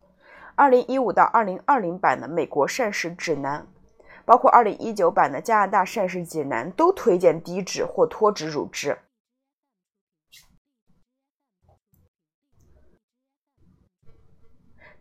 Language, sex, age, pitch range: Chinese, female, 30-49, 160-255 Hz